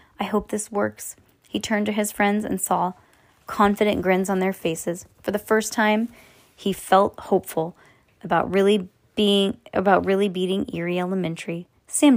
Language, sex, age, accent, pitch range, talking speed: English, female, 20-39, American, 170-210 Hz, 160 wpm